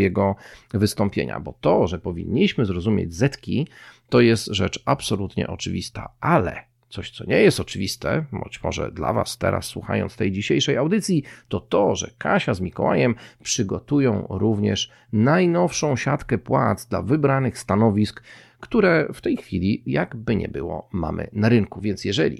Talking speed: 145 wpm